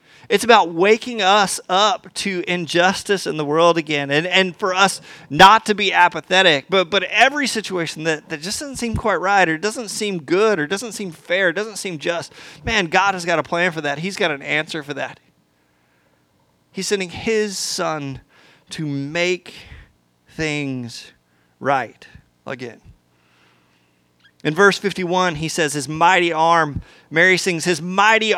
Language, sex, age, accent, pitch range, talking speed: English, male, 30-49, American, 145-195 Hz, 160 wpm